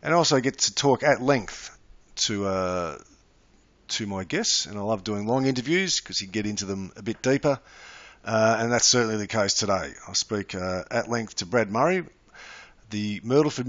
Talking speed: 195 wpm